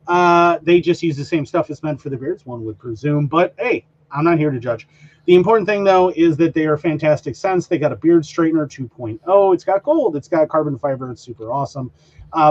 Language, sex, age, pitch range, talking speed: English, male, 30-49, 135-175 Hz, 235 wpm